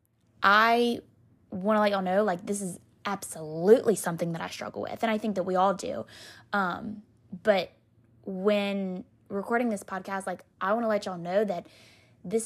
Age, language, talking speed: 20-39, English, 180 wpm